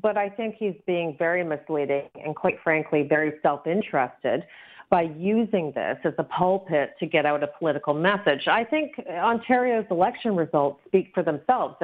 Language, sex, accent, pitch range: English, female, American, 155-205 Hz